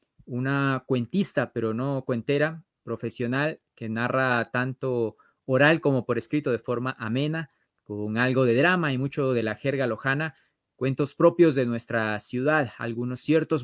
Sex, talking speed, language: male, 145 wpm, Spanish